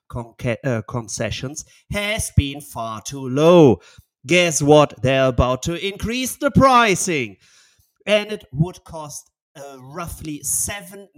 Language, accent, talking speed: English, German, 125 wpm